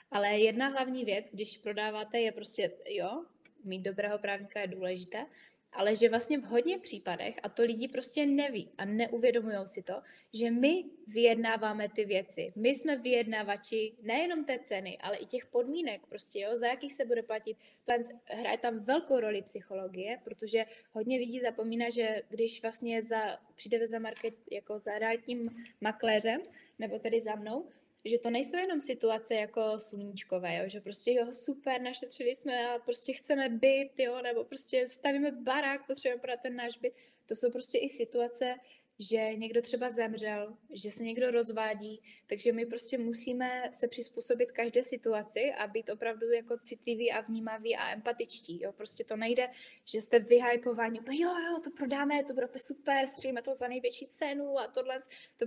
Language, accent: Czech, native